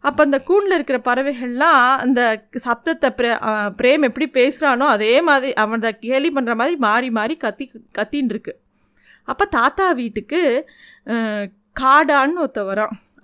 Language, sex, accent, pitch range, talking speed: Tamil, female, native, 220-280 Hz, 120 wpm